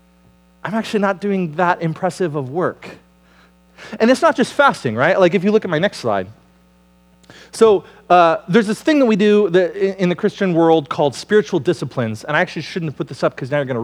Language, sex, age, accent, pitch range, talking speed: English, male, 30-49, American, 135-205 Hz, 215 wpm